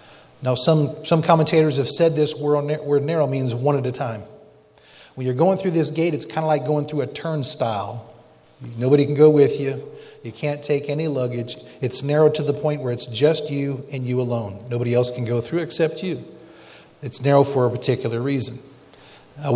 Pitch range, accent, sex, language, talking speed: 125-160 Hz, American, male, English, 195 wpm